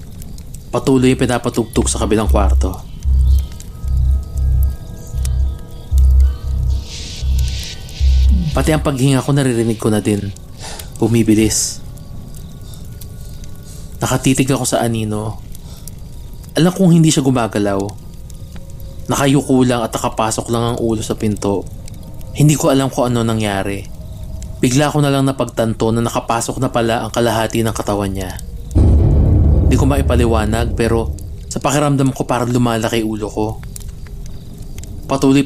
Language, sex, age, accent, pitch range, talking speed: Filipino, male, 20-39, native, 80-120 Hz, 110 wpm